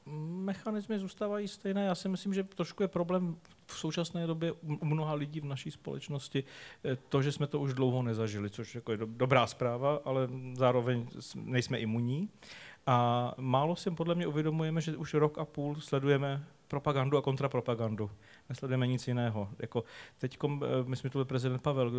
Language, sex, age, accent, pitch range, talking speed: Czech, male, 40-59, native, 115-150 Hz, 170 wpm